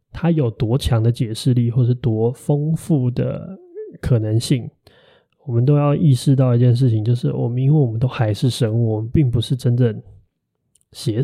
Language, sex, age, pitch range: Chinese, male, 20-39, 115-145 Hz